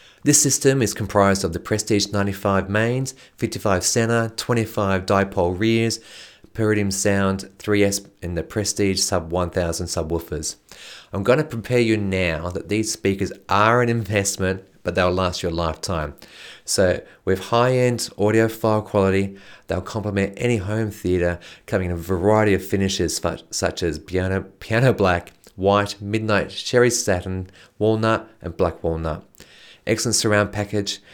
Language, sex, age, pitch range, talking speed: English, male, 30-49, 95-110 Hz, 140 wpm